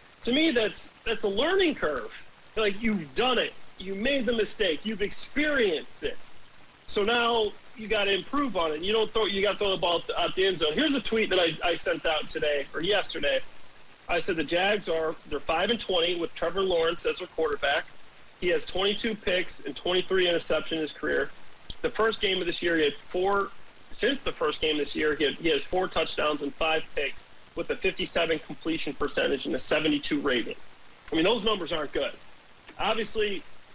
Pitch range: 170-220 Hz